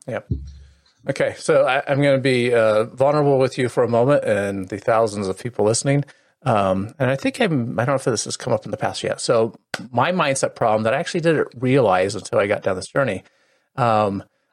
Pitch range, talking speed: 115-175 Hz, 225 wpm